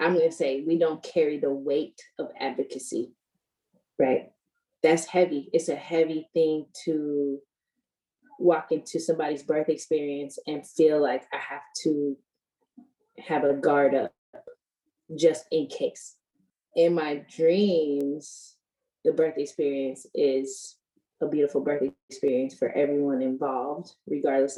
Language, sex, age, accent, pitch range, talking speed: English, female, 20-39, American, 145-195 Hz, 125 wpm